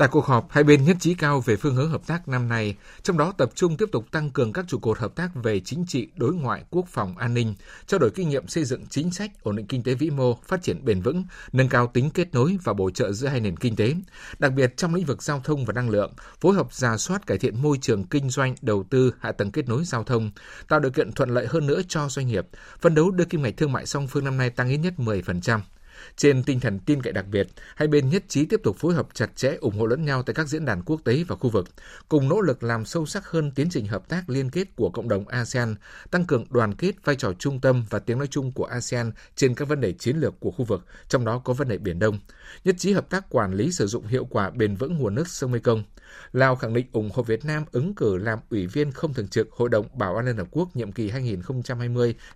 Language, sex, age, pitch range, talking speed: Vietnamese, male, 60-79, 115-150 Hz, 275 wpm